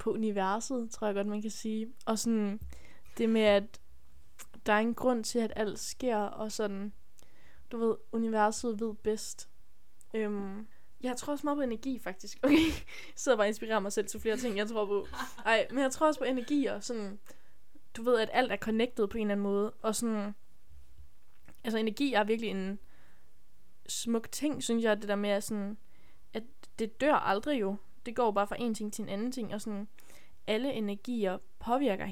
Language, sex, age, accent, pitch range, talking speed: Danish, female, 10-29, native, 200-235 Hz, 195 wpm